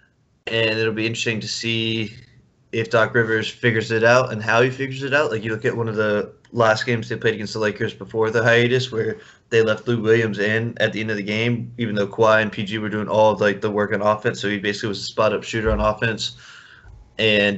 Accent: American